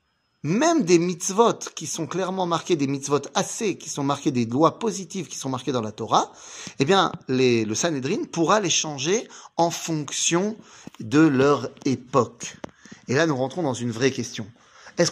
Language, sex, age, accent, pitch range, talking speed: French, male, 30-49, French, 130-180 Hz, 175 wpm